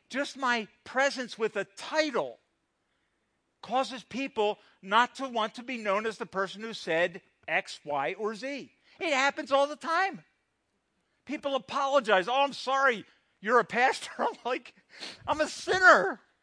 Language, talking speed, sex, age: English, 150 wpm, male, 50-69